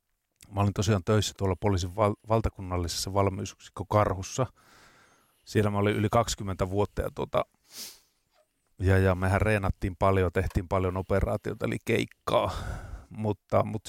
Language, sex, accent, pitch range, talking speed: Finnish, male, native, 95-110 Hz, 125 wpm